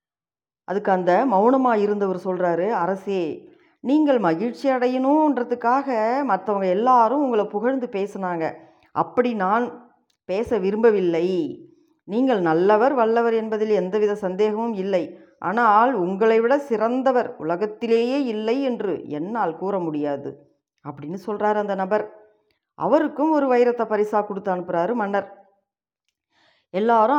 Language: Tamil